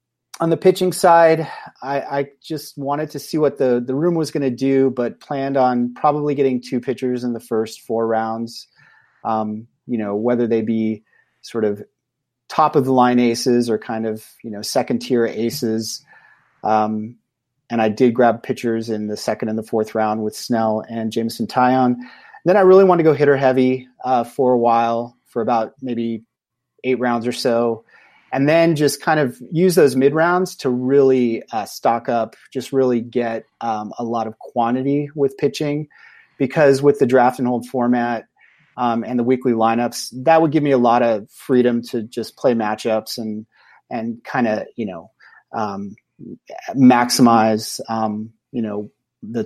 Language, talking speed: English, 180 wpm